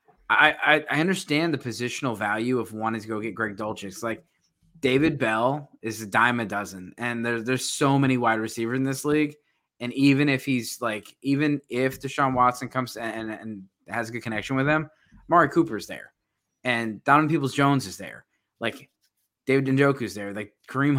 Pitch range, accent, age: 115-140 Hz, American, 20-39